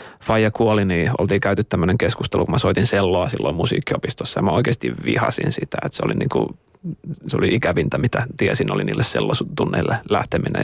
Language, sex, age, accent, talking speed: Finnish, male, 30-49, native, 175 wpm